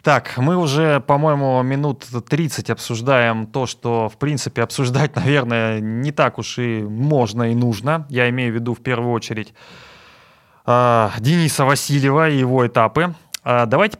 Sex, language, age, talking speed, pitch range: male, Russian, 20-39, 140 wpm, 125-160 Hz